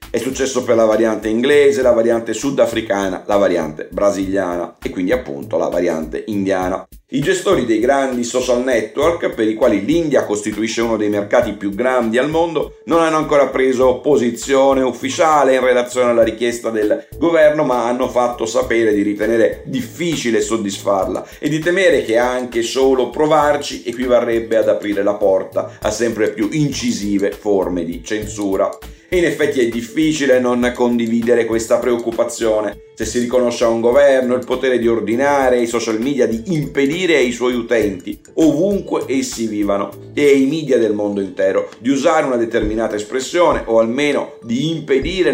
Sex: male